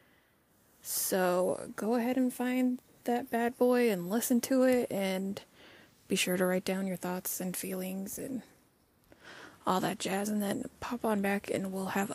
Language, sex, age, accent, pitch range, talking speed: English, female, 20-39, American, 180-250 Hz, 170 wpm